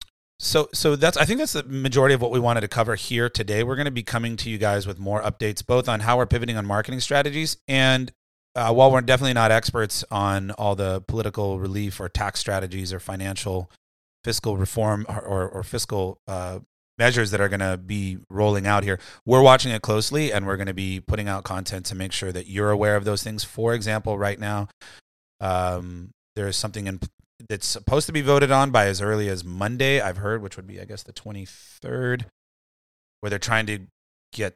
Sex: male